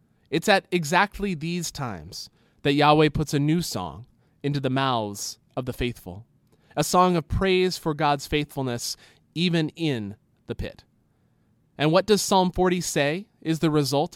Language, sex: English, male